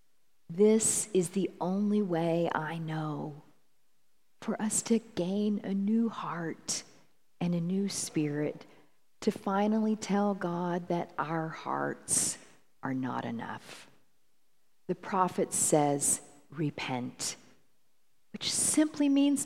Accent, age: American, 50-69